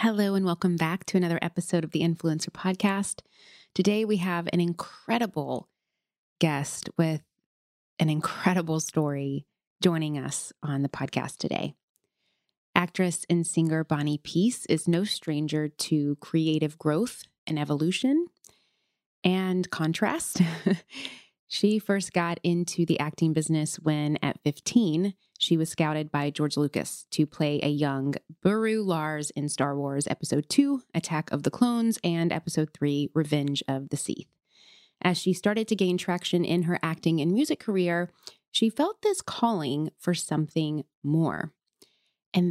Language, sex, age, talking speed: English, female, 20-39, 140 wpm